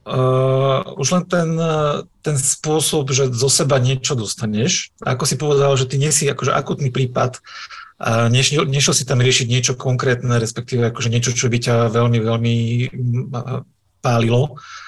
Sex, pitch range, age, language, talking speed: male, 120-140 Hz, 40-59, Slovak, 155 wpm